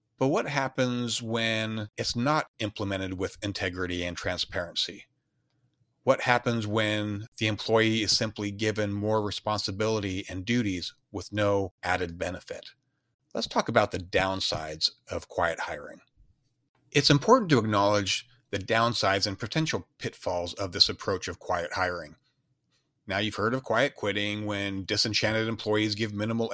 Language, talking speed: English, 140 wpm